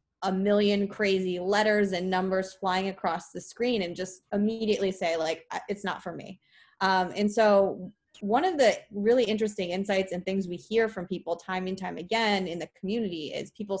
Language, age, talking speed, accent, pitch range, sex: English, 20-39, 185 wpm, American, 180-210 Hz, female